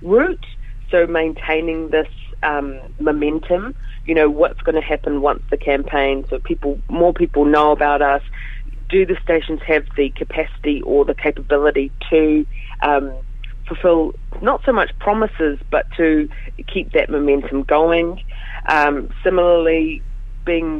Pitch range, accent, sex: 125-155 Hz, Australian, female